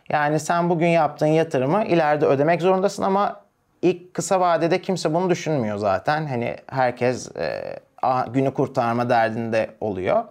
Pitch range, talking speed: 125-175 Hz, 135 wpm